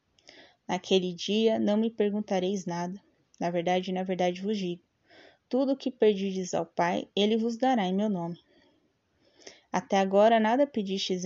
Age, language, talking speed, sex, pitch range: 10-29, Portuguese, 150 wpm, female, 185-225 Hz